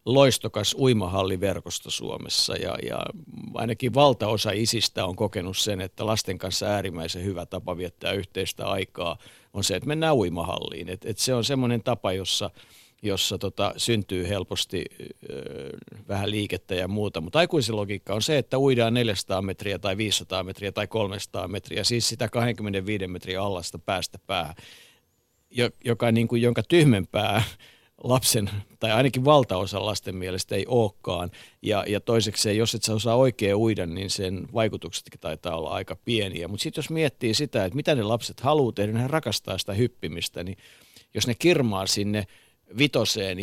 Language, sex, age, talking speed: Finnish, male, 50-69, 155 wpm